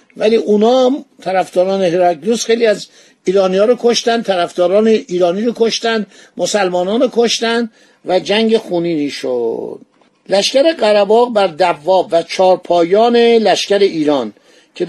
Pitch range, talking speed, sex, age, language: 180-230 Hz, 120 wpm, male, 50-69, Persian